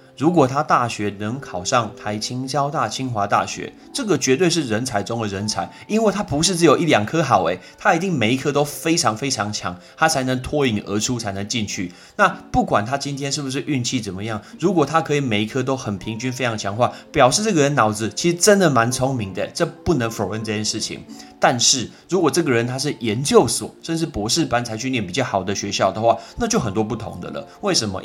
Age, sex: 30-49, male